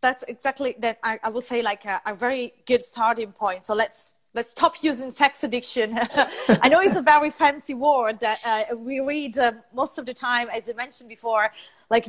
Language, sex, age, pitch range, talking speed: Italian, female, 30-49, 210-260 Hz, 210 wpm